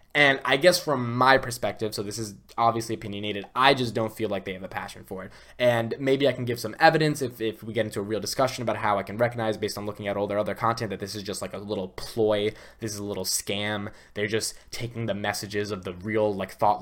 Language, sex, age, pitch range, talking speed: English, male, 10-29, 105-130 Hz, 260 wpm